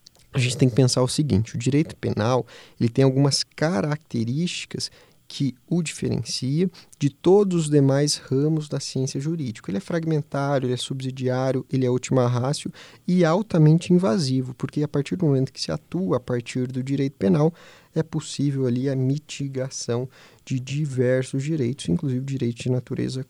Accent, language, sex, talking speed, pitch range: Brazilian, Portuguese, male, 165 wpm, 130-160 Hz